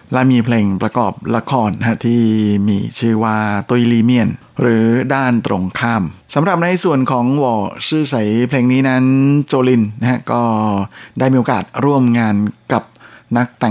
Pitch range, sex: 110-125 Hz, male